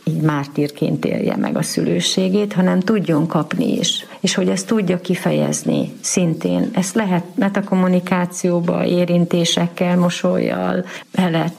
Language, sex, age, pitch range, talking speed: Hungarian, female, 40-59, 160-190 Hz, 120 wpm